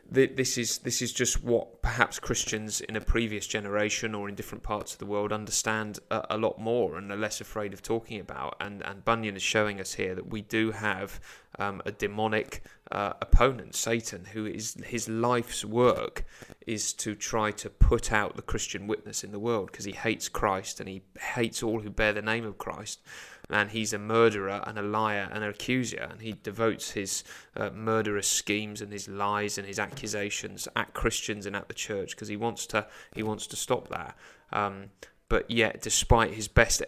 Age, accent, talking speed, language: 30-49, British, 195 wpm, English